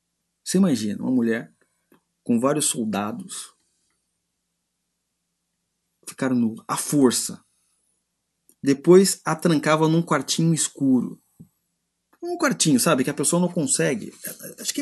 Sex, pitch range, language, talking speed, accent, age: male, 130-180 Hz, Portuguese, 110 wpm, Brazilian, 30-49